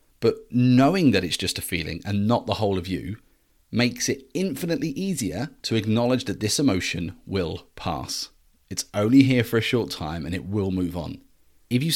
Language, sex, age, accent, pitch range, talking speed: English, male, 30-49, British, 95-125 Hz, 190 wpm